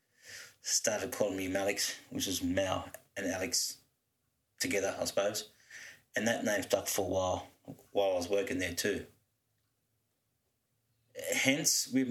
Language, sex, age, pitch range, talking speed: English, male, 30-49, 100-125 Hz, 135 wpm